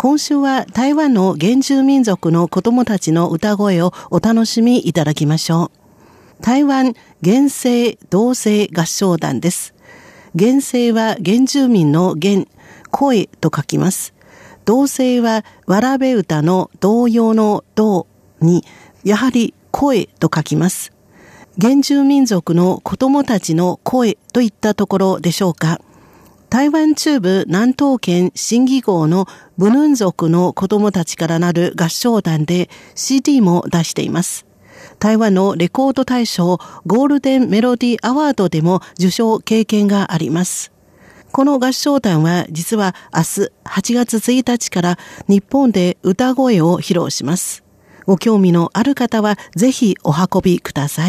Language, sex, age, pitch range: Japanese, female, 50-69, 175-245 Hz